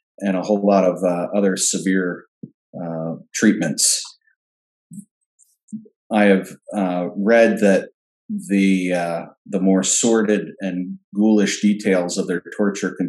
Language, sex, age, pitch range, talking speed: English, male, 40-59, 95-115 Hz, 125 wpm